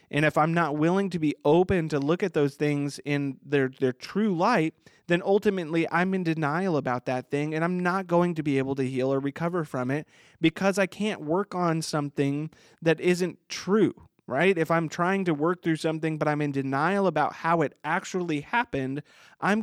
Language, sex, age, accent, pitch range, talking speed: English, male, 30-49, American, 135-165 Hz, 200 wpm